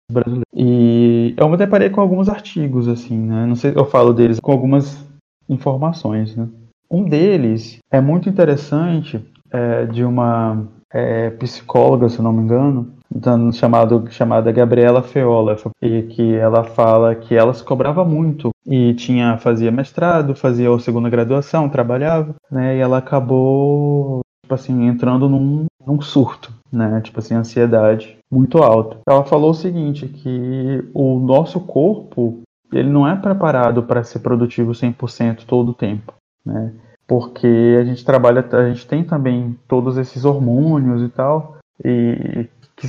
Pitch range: 120-145 Hz